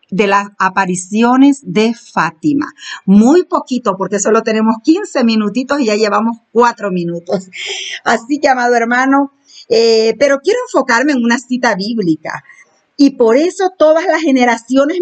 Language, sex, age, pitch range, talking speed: Spanish, female, 50-69, 190-265 Hz, 140 wpm